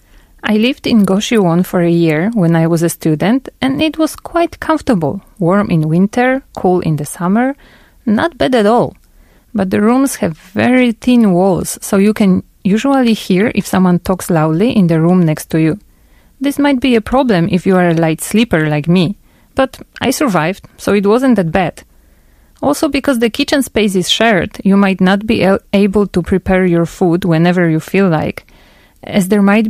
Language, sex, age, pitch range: Korean, female, 30-49, 170-230 Hz